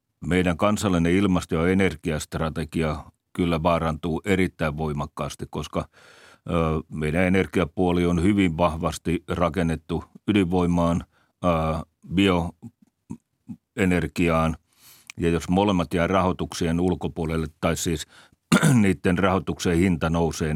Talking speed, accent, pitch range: 90 wpm, native, 80-95 Hz